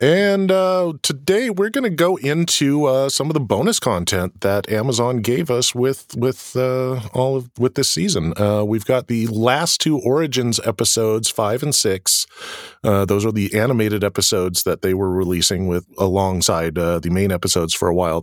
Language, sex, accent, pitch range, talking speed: English, male, American, 95-135 Hz, 185 wpm